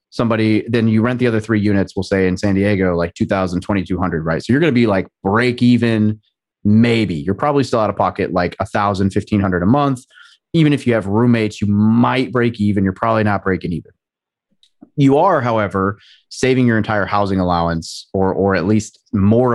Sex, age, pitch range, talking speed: male, 30-49, 95-125 Hz, 195 wpm